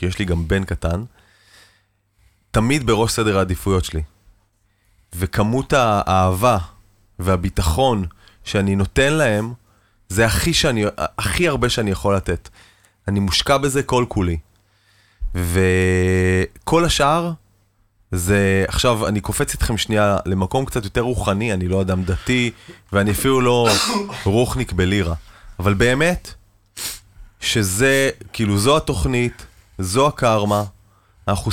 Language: Hebrew